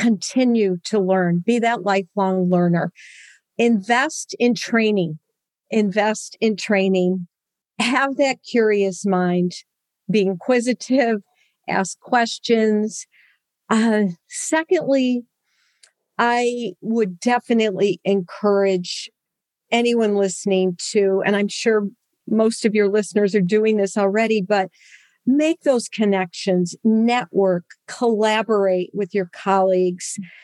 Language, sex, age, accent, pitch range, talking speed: English, female, 50-69, American, 195-235 Hz, 100 wpm